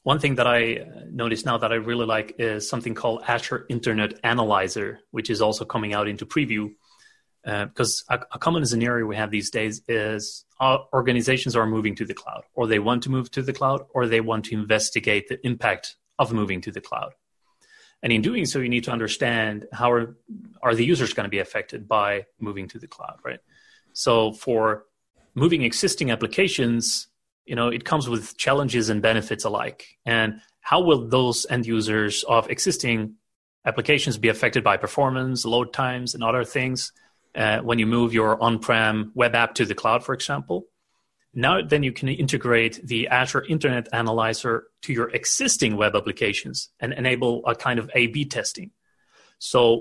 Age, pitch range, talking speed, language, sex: 30-49, 110-130 Hz, 180 wpm, English, male